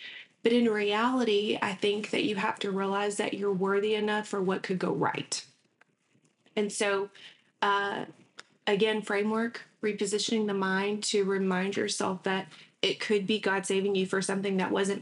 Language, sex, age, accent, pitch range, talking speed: English, female, 20-39, American, 190-215 Hz, 165 wpm